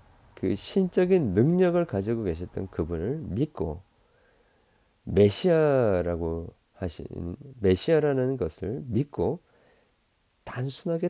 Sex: male